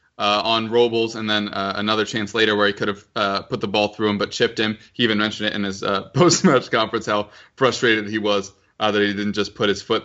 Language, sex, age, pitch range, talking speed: English, male, 20-39, 105-125 Hz, 255 wpm